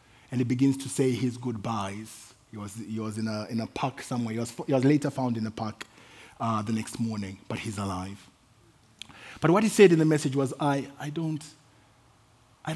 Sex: male